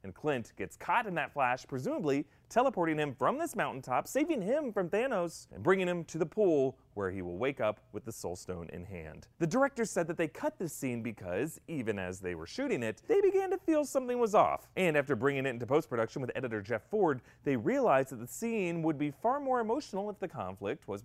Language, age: English, 30-49